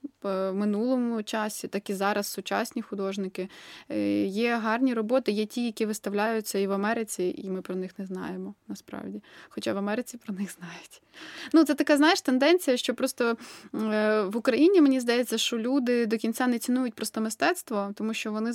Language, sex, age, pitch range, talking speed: Ukrainian, female, 20-39, 205-245 Hz, 170 wpm